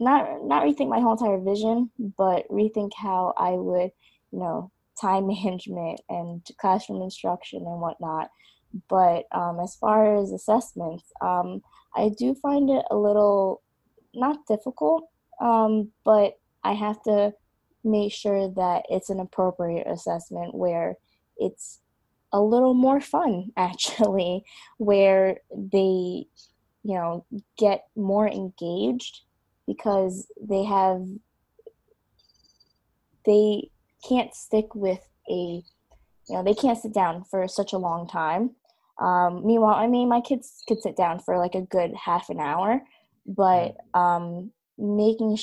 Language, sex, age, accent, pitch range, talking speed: English, female, 20-39, American, 180-225 Hz, 130 wpm